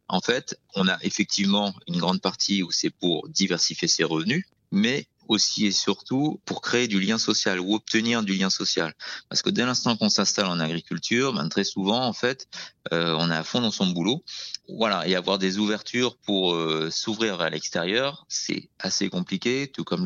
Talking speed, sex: 190 wpm, male